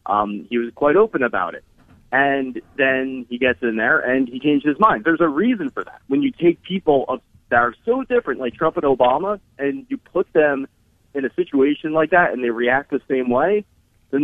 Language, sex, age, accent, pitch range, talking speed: English, male, 30-49, American, 115-165 Hz, 215 wpm